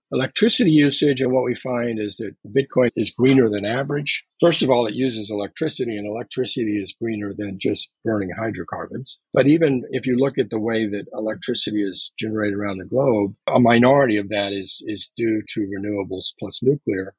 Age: 50-69